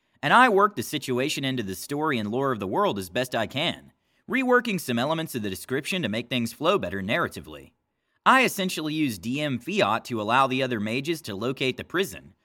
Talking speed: 205 wpm